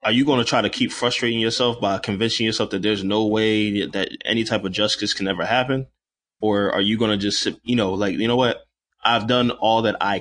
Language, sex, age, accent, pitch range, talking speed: English, male, 20-39, American, 100-120 Hz, 240 wpm